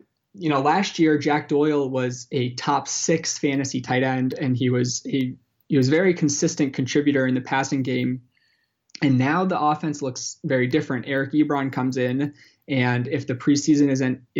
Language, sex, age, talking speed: English, male, 20-39, 180 wpm